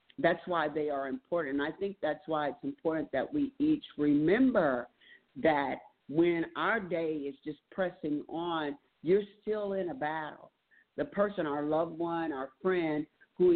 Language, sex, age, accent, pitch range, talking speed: English, male, 50-69, American, 140-175 Hz, 165 wpm